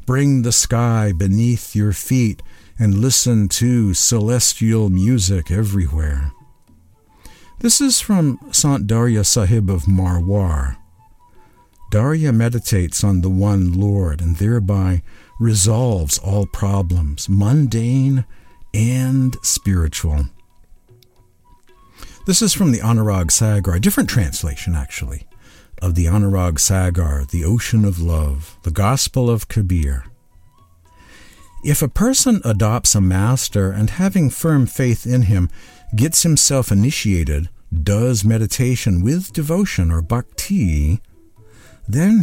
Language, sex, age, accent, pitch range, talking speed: English, male, 60-79, American, 90-125 Hz, 110 wpm